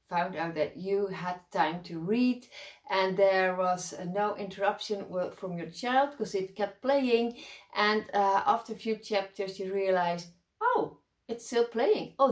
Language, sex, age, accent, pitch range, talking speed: English, female, 30-49, Dutch, 180-235 Hz, 165 wpm